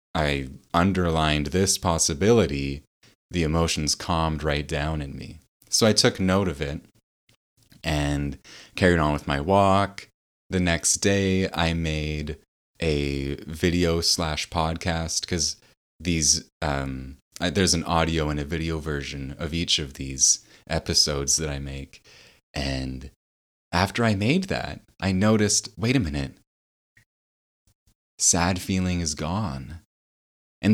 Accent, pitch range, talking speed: American, 75-95 Hz, 125 wpm